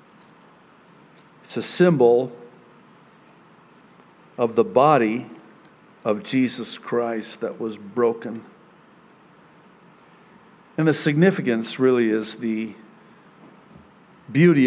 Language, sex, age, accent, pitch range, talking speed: English, male, 50-69, American, 115-160 Hz, 80 wpm